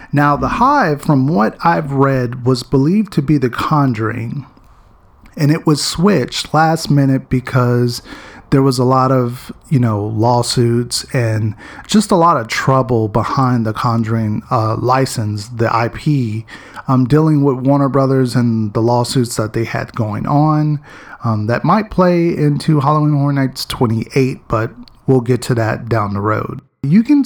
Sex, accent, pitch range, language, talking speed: male, American, 120-150 Hz, English, 160 wpm